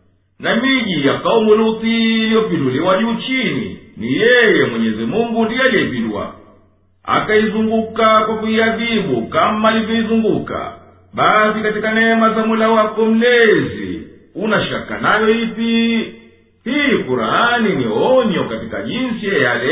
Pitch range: 215-230 Hz